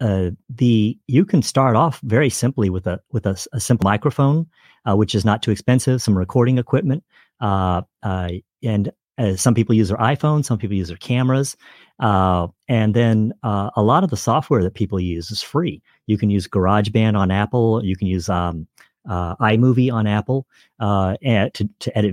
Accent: American